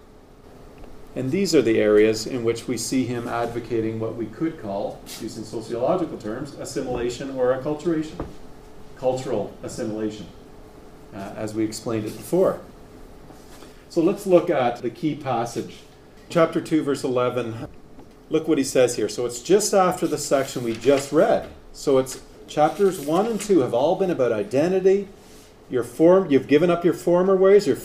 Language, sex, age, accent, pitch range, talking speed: English, male, 40-59, American, 120-165 Hz, 155 wpm